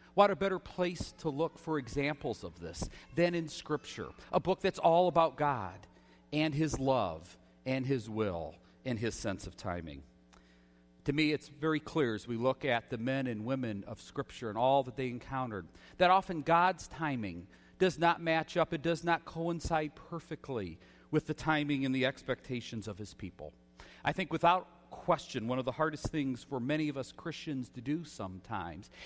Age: 40-59